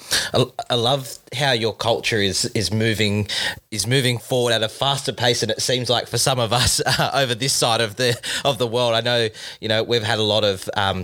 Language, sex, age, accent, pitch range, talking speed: English, male, 20-39, Australian, 100-120 Hz, 230 wpm